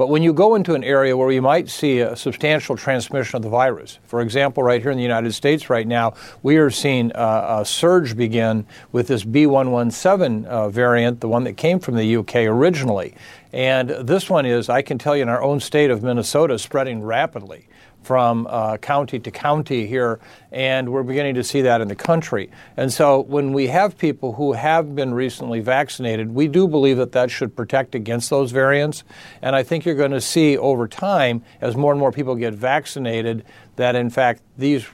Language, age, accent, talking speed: English, 50-69, American, 205 wpm